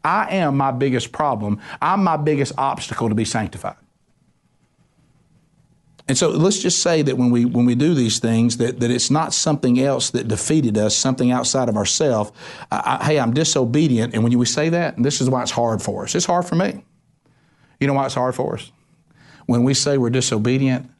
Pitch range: 120-155 Hz